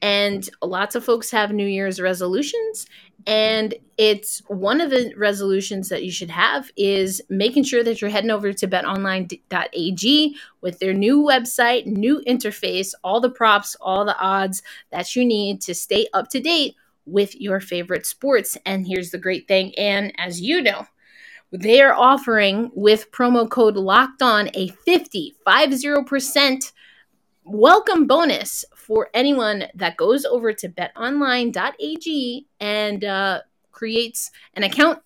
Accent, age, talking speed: American, 20-39, 145 wpm